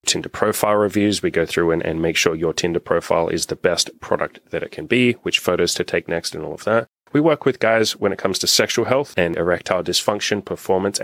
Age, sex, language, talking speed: 30-49, male, English, 240 wpm